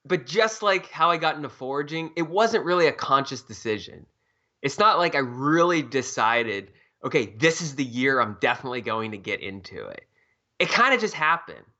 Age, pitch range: 20-39, 110-145 Hz